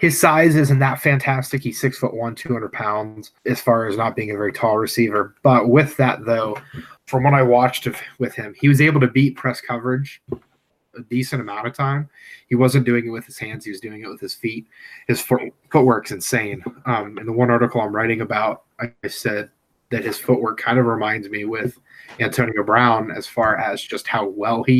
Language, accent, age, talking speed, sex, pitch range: English, American, 20-39, 210 wpm, male, 115-130 Hz